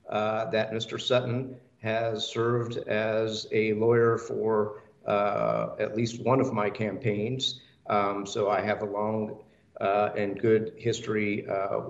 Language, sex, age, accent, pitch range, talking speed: English, male, 50-69, American, 105-120 Hz, 140 wpm